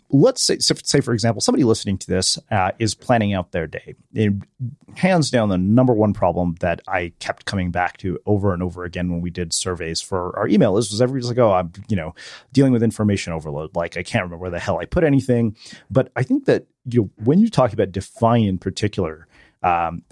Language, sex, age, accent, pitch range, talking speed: English, male, 30-49, American, 95-130 Hz, 225 wpm